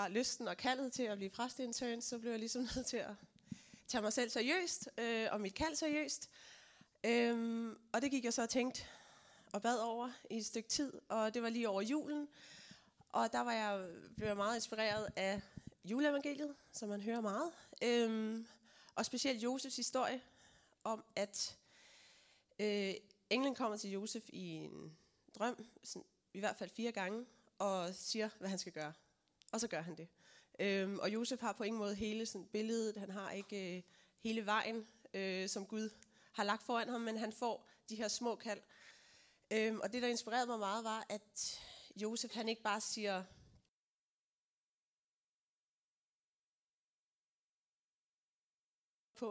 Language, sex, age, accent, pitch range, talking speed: Danish, female, 20-39, native, 205-240 Hz, 155 wpm